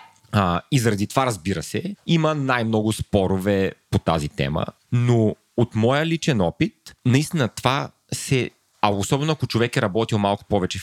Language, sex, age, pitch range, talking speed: Bulgarian, male, 30-49, 95-140 Hz, 155 wpm